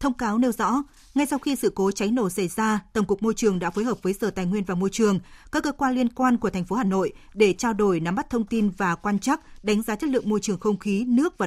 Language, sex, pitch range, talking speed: Vietnamese, female, 200-250 Hz, 300 wpm